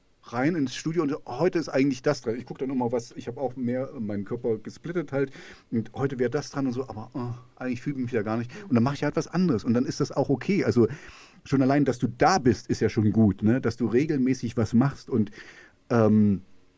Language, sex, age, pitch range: English, male, 40-59, 110-135 Hz